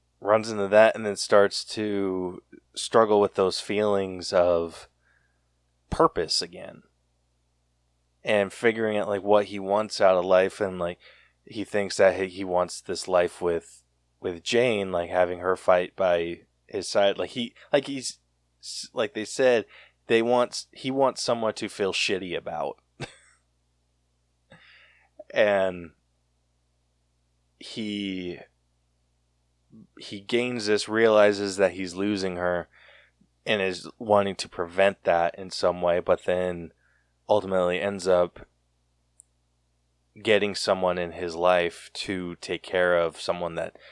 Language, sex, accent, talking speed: English, male, American, 130 wpm